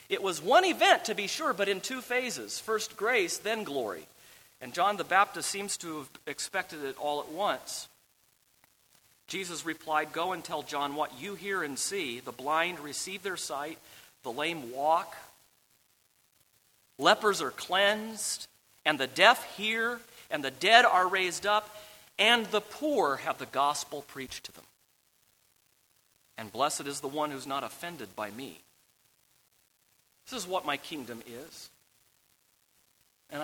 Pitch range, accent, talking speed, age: 130-200 Hz, American, 155 wpm, 40-59